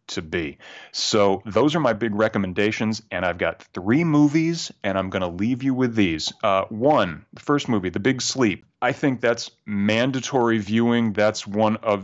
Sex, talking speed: male, 185 wpm